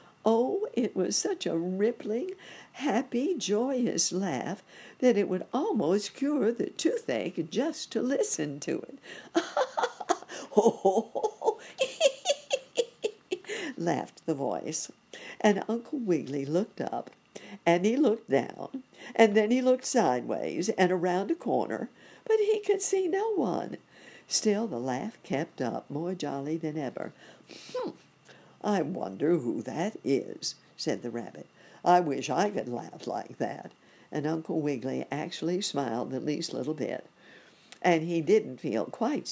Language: English